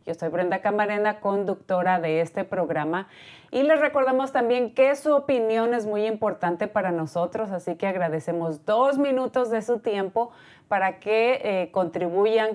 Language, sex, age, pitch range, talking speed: Spanish, female, 30-49, 175-220 Hz, 155 wpm